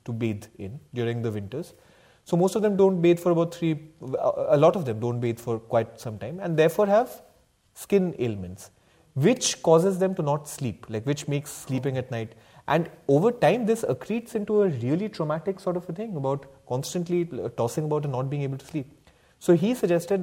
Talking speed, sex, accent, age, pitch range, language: 200 wpm, male, Indian, 30-49, 120-175 Hz, English